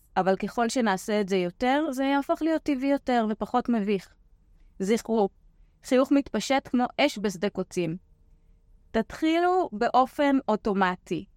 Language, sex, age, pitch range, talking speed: Hebrew, female, 20-39, 185-255 Hz, 120 wpm